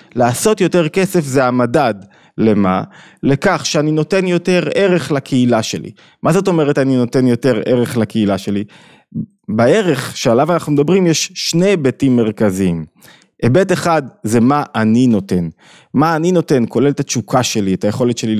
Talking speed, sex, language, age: 150 wpm, male, Hebrew, 20-39